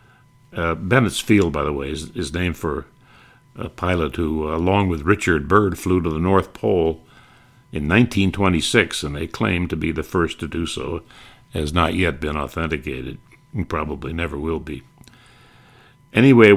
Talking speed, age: 170 wpm, 60-79